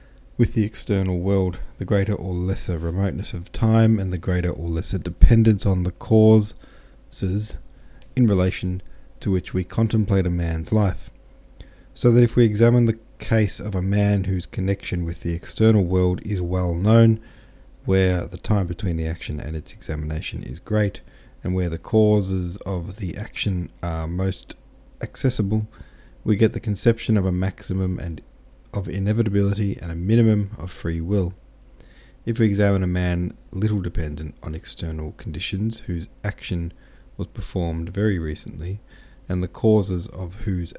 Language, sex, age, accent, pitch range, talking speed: English, male, 40-59, Australian, 90-110 Hz, 155 wpm